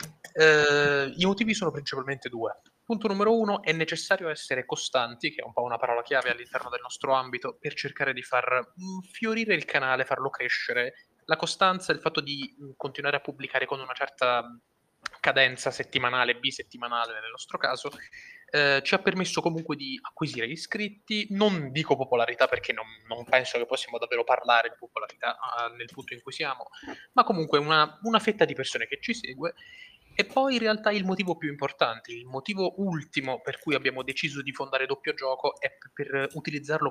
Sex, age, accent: male, 20-39, native